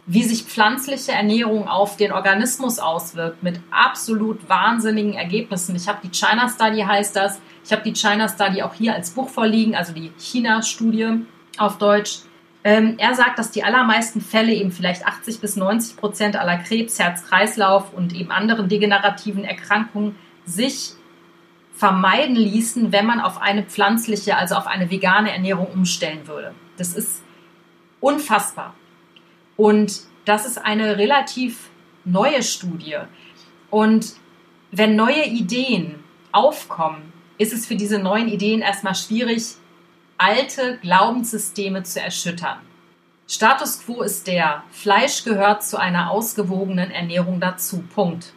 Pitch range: 185-225 Hz